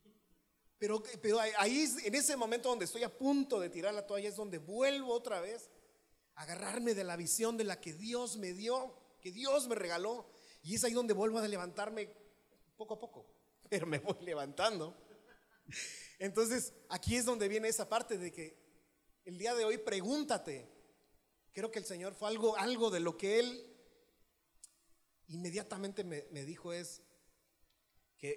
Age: 40-59